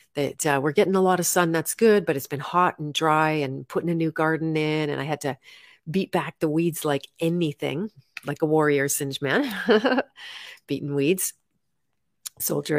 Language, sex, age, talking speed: English, female, 40-59, 190 wpm